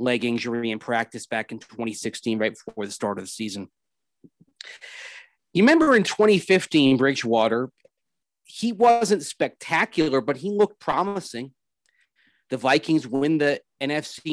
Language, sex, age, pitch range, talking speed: English, male, 40-59, 120-155 Hz, 130 wpm